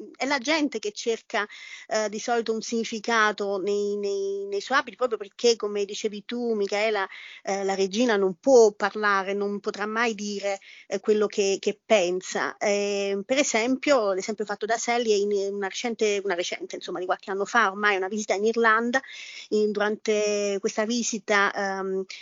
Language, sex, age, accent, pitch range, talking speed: Italian, female, 30-49, native, 200-230 Hz, 175 wpm